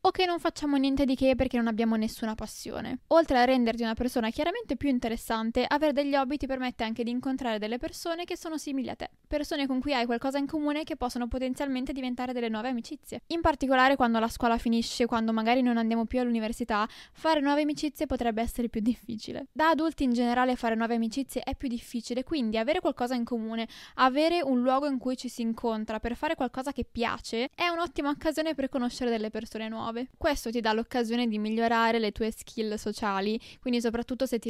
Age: 10-29